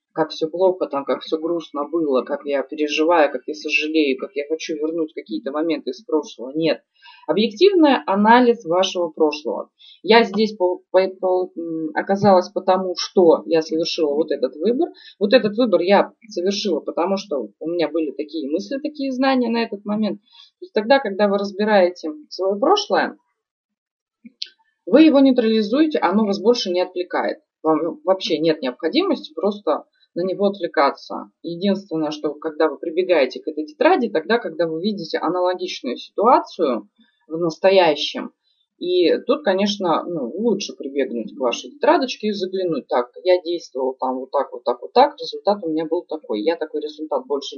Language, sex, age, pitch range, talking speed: Russian, female, 20-39, 160-235 Hz, 160 wpm